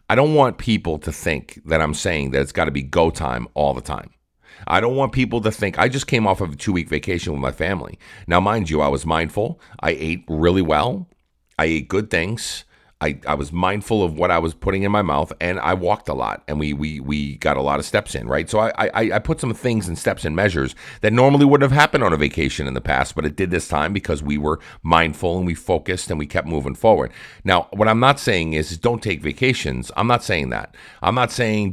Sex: male